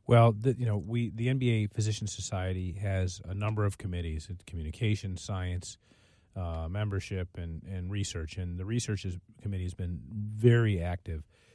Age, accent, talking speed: 40-59, American, 150 wpm